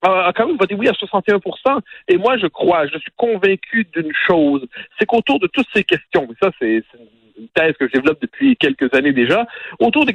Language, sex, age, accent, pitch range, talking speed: French, male, 50-69, French, 145-220 Hz, 205 wpm